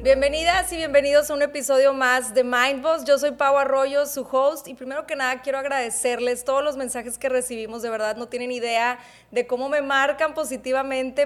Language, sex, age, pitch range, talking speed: Spanish, female, 20-39, 235-275 Hz, 190 wpm